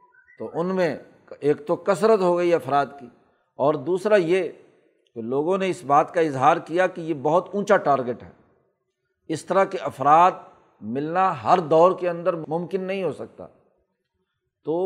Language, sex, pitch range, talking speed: Urdu, male, 155-190 Hz, 165 wpm